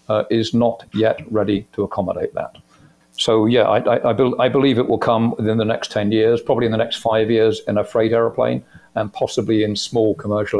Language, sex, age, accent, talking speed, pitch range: English, male, 50-69, British, 205 wpm, 105-120 Hz